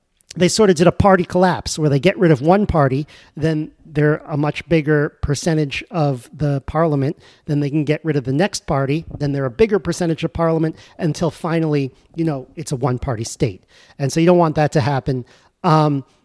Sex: male